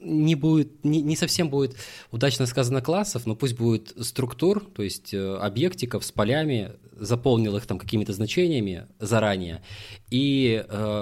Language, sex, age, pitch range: Russian, male, 20-39, 100-125 Hz